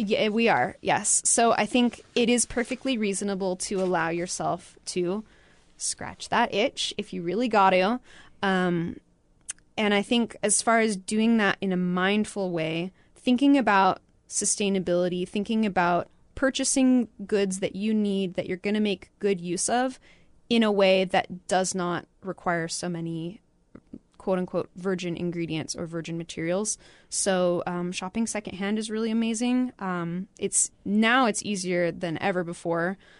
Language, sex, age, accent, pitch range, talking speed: English, female, 20-39, American, 180-215 Hz, 155 wpm